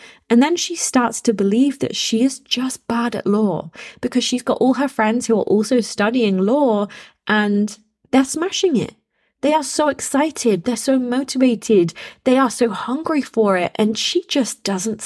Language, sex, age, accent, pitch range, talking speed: English, female, 20-39, British, 195-265 Hz, 180 wpm